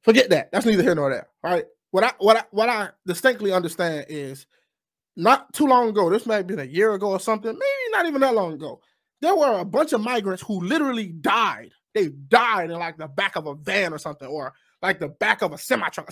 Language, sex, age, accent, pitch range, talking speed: English, male, 20-39, American, 180-270 Hz, 240 wpm